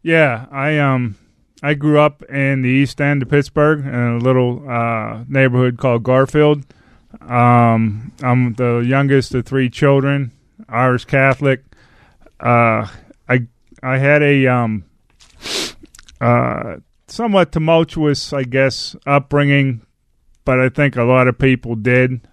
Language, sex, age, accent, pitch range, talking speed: English, male, 20-39, American, 115-135 Hz, 130 wpm